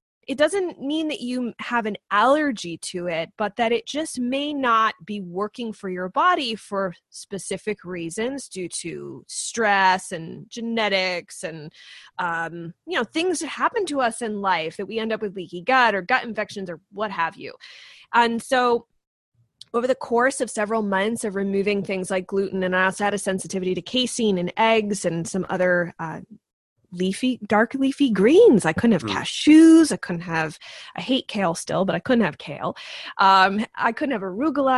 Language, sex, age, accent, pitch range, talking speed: English, female, 20-39, American, 190-255 Hz, 185 wpm